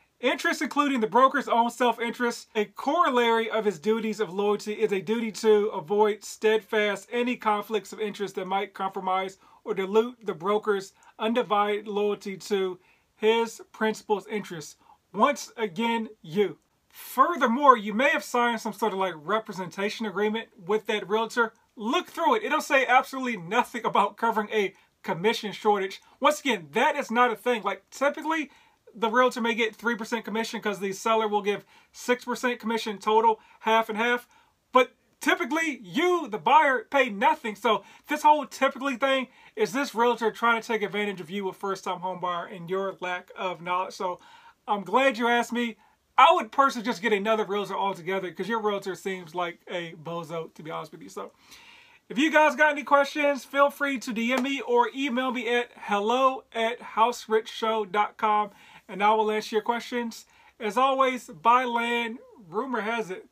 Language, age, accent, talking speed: English, 40-59, American, 170 wpm